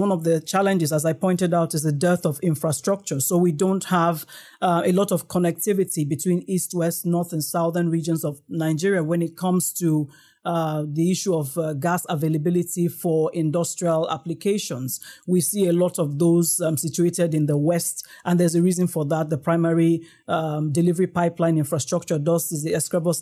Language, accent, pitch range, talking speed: English, Nigerian, 160-180 Hz, 185 wpm